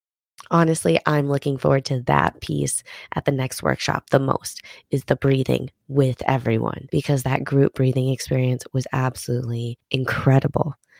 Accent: American